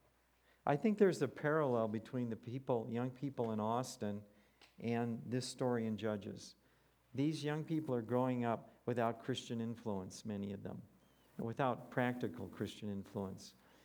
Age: 50-69